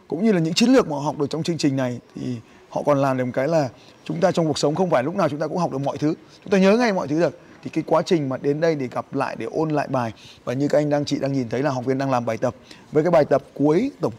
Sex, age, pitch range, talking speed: male, 20-39, 130-160 Hz, 345 wpm